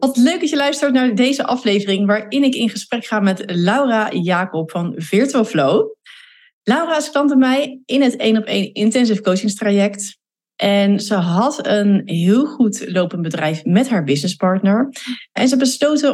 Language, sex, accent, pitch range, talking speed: Dutch, female, Dutch, 195-250 Hz, 165 wpm